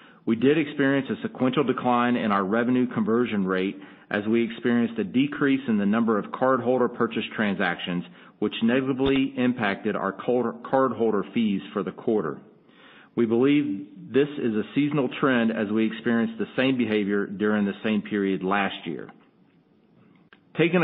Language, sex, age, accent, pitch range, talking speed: English, male, 40-59, American, 105-135 Hz, 150 wpm